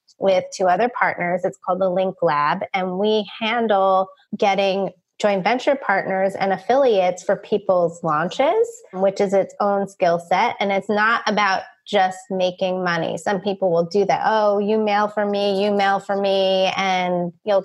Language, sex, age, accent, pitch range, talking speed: English, female, 30-49, American, 185-215 Hz, 170 wpm